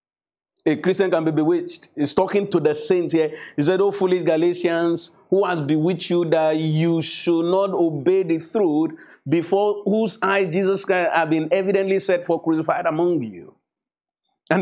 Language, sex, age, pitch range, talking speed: English, male, 50-69, 165-200 Hz, 165 wpm